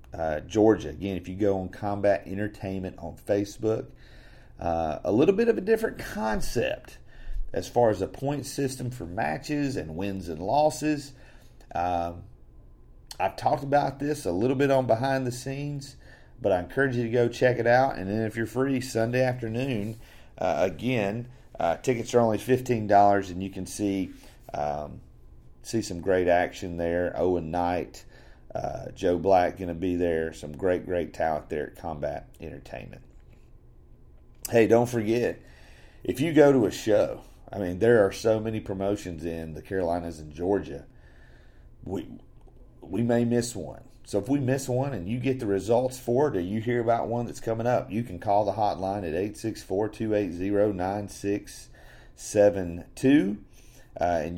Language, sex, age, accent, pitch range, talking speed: English, male, 40-59, American, 90-120 Hz, 160 wpm